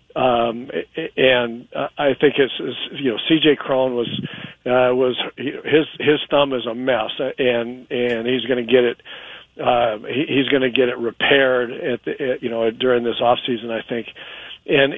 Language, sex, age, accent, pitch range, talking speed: English, male, 50-69, American, 125-140 Hz, 180 wpm